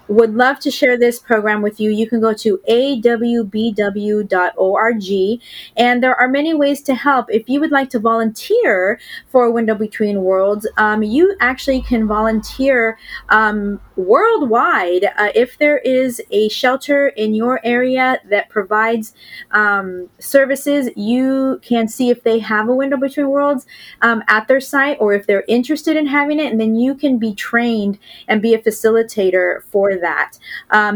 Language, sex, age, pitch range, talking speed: English, female, 20-39, 200-250 Hz, 165 wpm